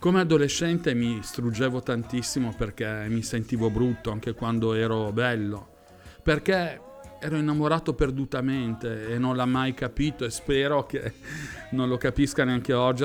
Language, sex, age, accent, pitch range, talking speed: Italian, male, 40-59, native, 115-140 Hz, 140 wpm